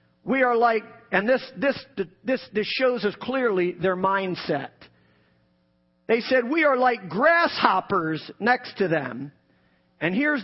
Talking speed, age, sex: 140 wpm, 40-59, male